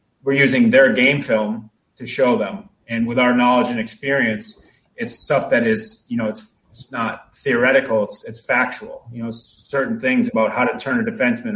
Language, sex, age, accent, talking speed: English, male, 30-49, American, 190 wpm